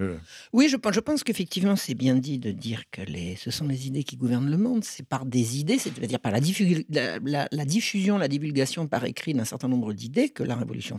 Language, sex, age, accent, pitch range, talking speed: French, male, 60-79, French, 125-170 Hz, 240 wpm